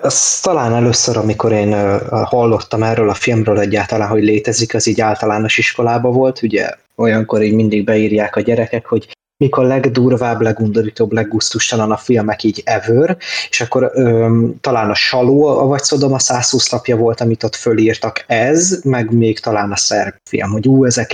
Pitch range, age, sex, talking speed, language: 110-130 Hz, 20-39, male, 165 wpm, Hungarian